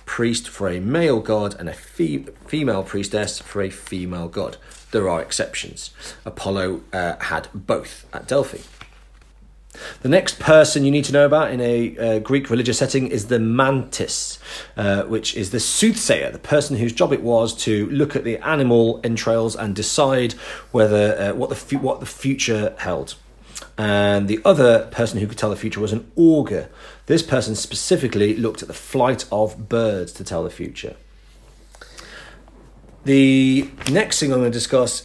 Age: 40-59